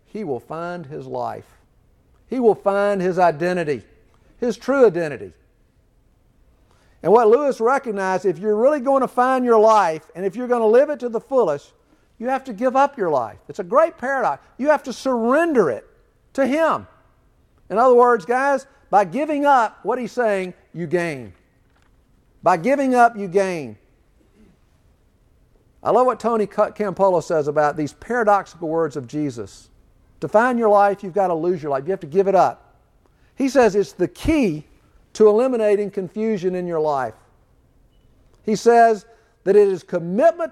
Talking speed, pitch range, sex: 170 wpm, 150-240 Hz, male